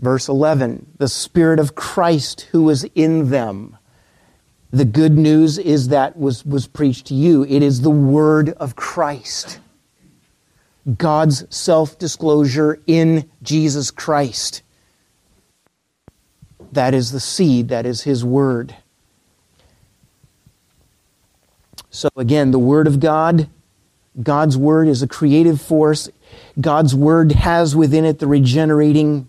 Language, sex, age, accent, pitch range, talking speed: English, male, 50-69, American, 115-150 Hz, 120 wpm